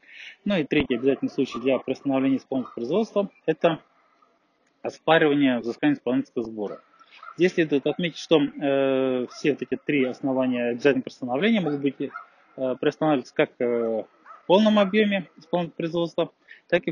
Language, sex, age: Russian, male, 20-39